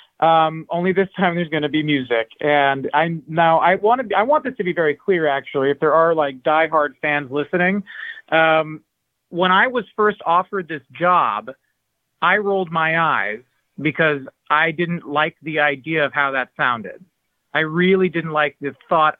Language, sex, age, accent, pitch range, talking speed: English, male, 40-59, American, 145-185 Hz, 180 wpm